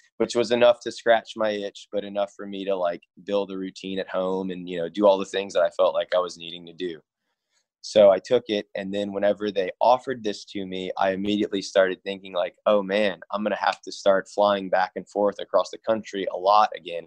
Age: 20-39